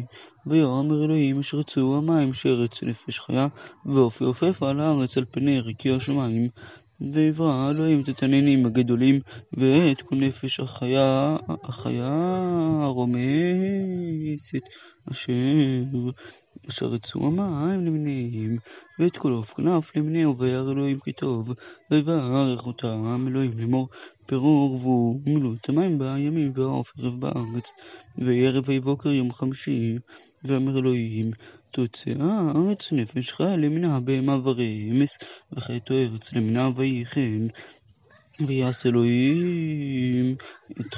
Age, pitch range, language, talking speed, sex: 20-39, 125-145 Hz, Hebrew, 100 wpm, male